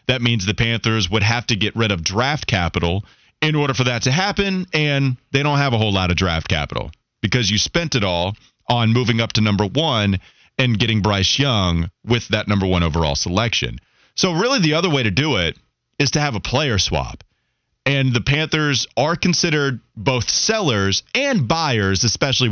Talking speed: 195 wpm